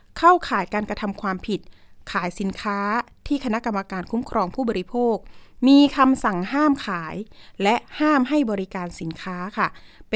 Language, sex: Thai, female